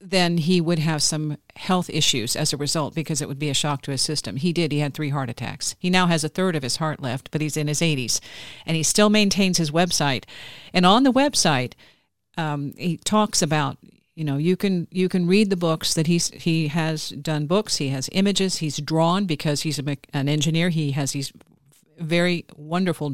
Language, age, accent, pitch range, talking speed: English, 50-69, American, 145-180 Hz, 220 wpm